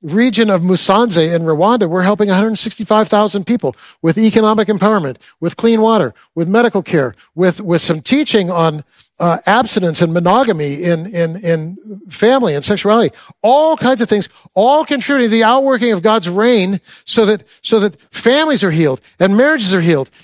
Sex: male